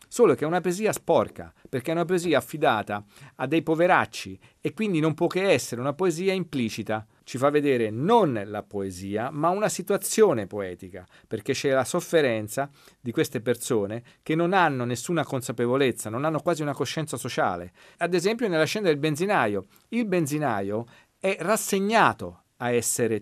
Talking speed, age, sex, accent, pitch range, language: 165 wpm, 40-59, male, native, 110-155 Hz, Italian